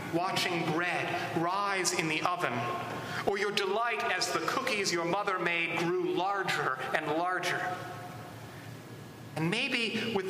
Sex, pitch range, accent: male, 170-215 Hz, American